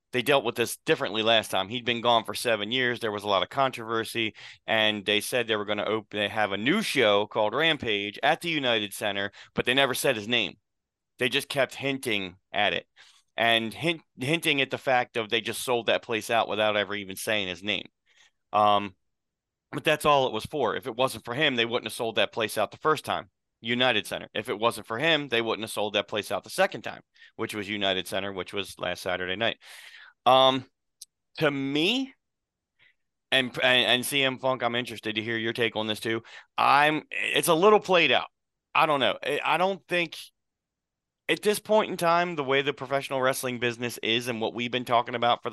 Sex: male